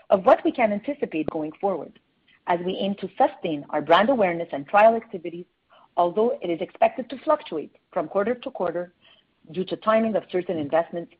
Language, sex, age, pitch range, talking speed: English, female, 40-59, 175-240 Hz, 180 wpm